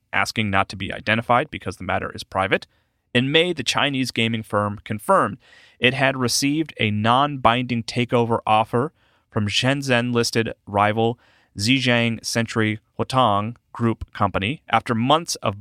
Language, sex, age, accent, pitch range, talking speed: English, male, 30-49, American, 105-130 Hz, 135 wpm